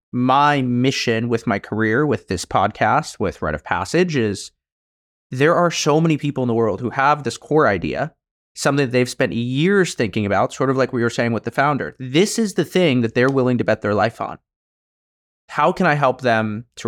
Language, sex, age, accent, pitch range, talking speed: English, male, 30-49, American, 115-155 Hz, 215 wpm